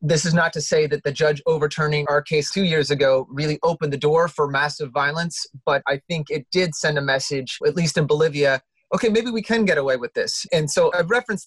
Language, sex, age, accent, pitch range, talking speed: English, male, 30-49, American, 150-185 Hz, 235 wpm